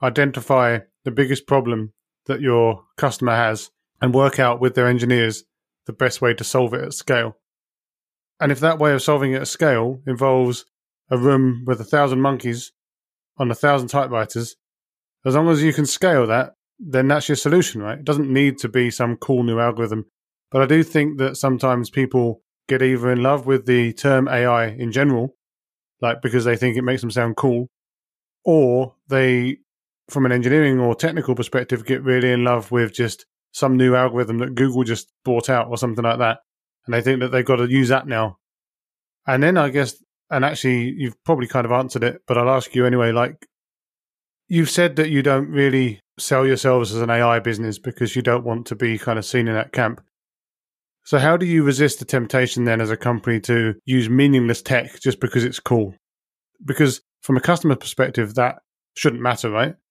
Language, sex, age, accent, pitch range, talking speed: English, male, 30-49, British, 120-135 Hz, 195 wpm